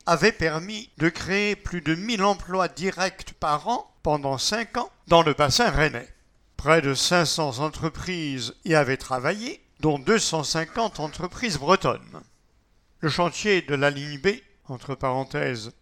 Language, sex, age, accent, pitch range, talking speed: English, male, 60-79, French, 145-190 Hz, 140 wpm